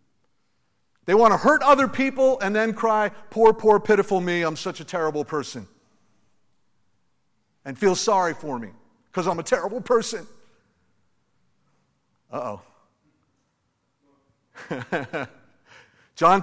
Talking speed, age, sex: 115 wpm, 50-69, male